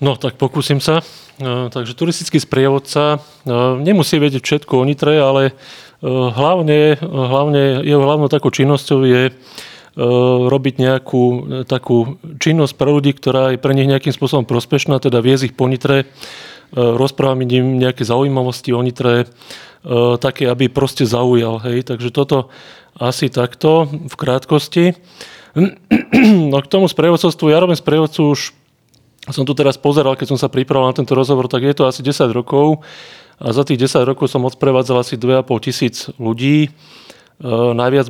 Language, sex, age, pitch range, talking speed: Slovak, male, 30-49, 125-145 Hz, 145 wpm